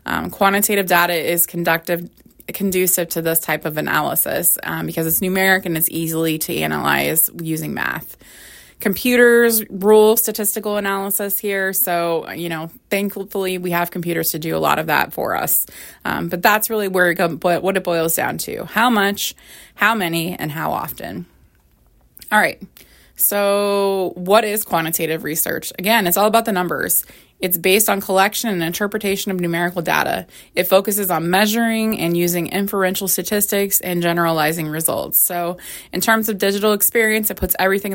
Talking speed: 165 wpm